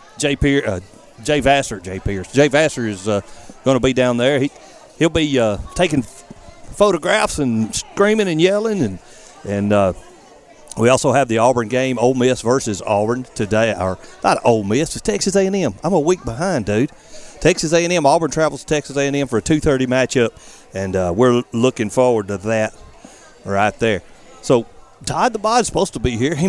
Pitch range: 110-145 Hz